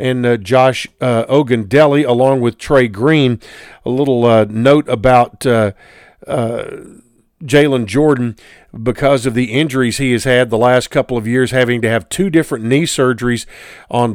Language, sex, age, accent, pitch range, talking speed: English, male, 50-69, American, 120-140 Hz, 160 wpm